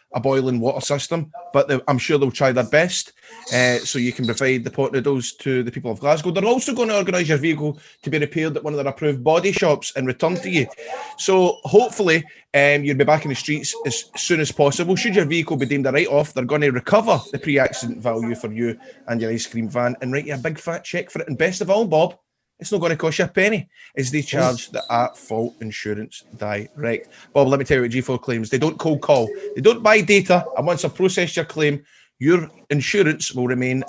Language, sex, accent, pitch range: English, male, British, 130-170 Hz